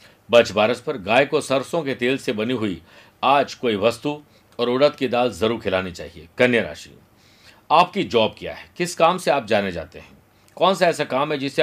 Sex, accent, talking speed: male, native, 205 wpm